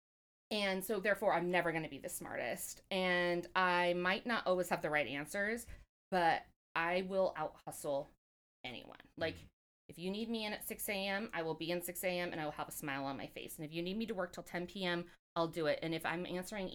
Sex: female